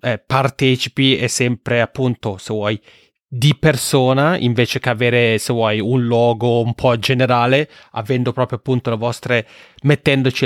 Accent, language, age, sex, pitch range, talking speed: native, Italian, 30-49, male, 120-140 Hz, 145 wpm